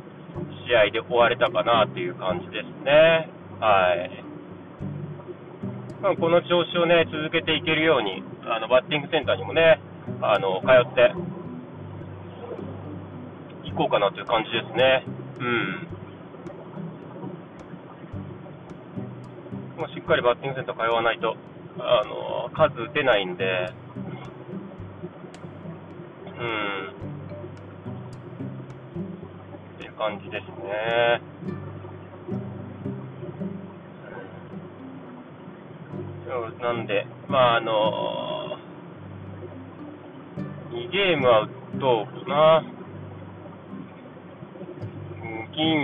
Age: 40-59